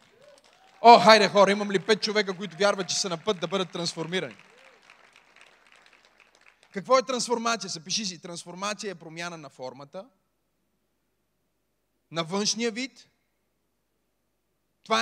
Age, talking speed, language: 30-49, 120 wpm, Bulgarian